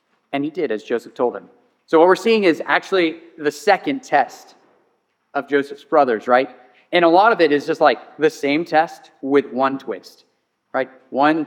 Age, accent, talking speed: 30-49, American, 190 wpm